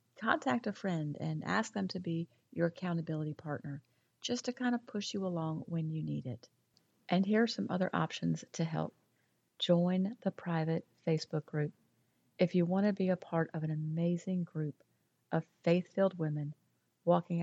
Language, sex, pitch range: English, female, 155-180 Hz